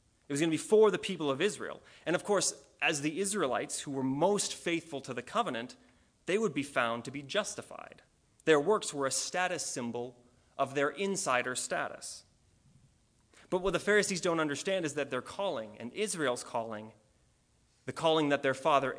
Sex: male